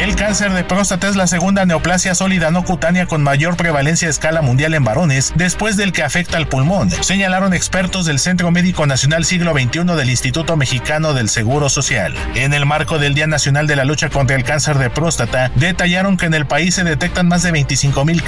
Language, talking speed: Spanish, 205 wpm